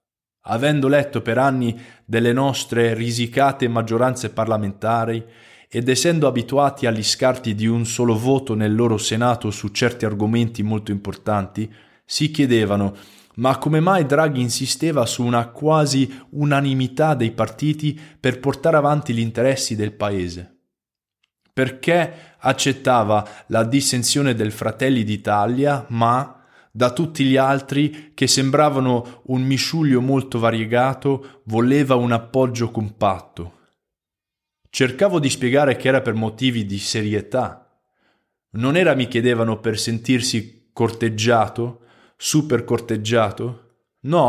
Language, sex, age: Italian, male, 20-39